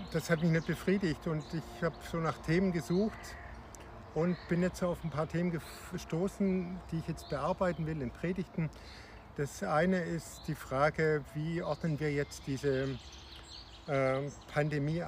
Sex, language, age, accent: male, German, 50-69, German